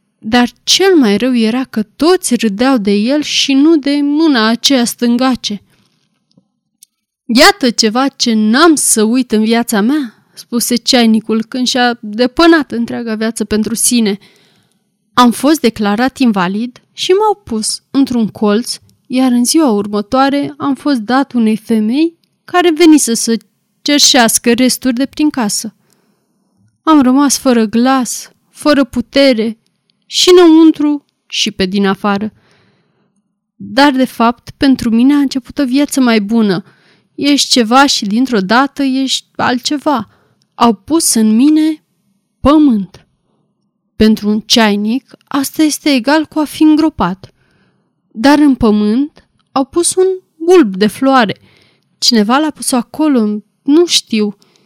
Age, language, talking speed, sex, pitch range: 20-39, Romanian, 130 wpm, female, 215-280 Hz